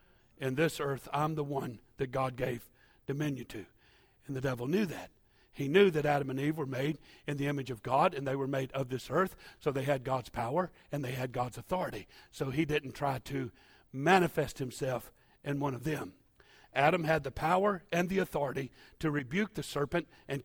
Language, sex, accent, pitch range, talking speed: English, male, American, 135-165 Hz, 200 wpm